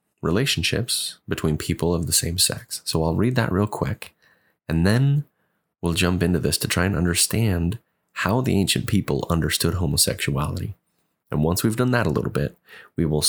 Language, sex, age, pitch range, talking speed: English, male, 30-49, 85-110 Hz, 175 wpm